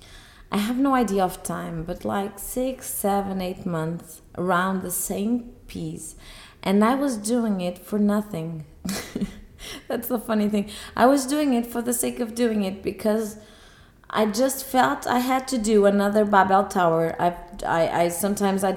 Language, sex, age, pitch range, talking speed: English, female, 20-39, 175-210 Hz, 170 wpm